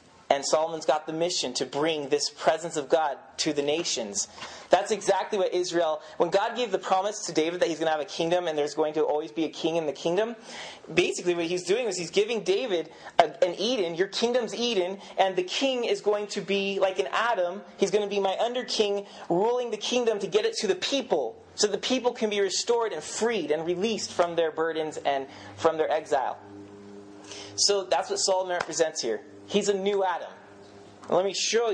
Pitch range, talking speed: 160-205 Hz, 210 wpm